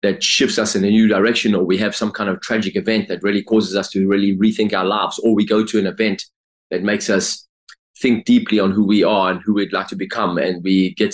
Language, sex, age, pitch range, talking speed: English, male, 20-39, 95-115 Hz, 260 wpm